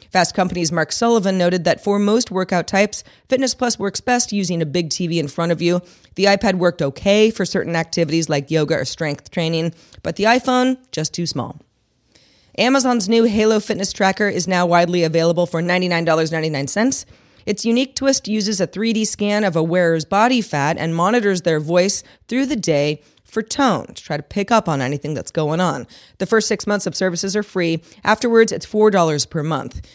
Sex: female